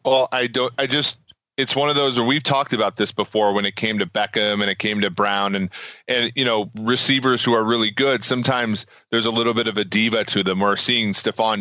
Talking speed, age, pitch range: 245 wpm, 30-49, 105-130 Hz